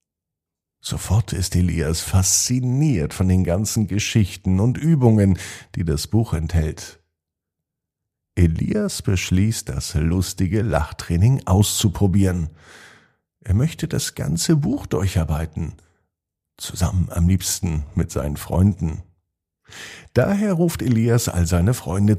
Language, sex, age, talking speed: German, male, 50-69, 105 wpm